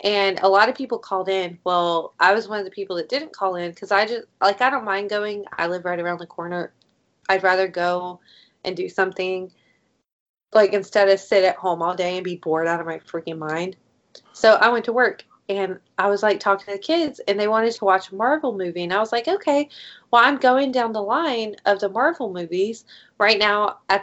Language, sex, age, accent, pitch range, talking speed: English, female, 20-39, American, 180-235 Hz, 230 wpm